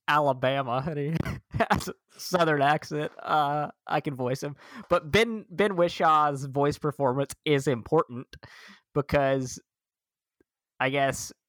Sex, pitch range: male, 120-145 Hz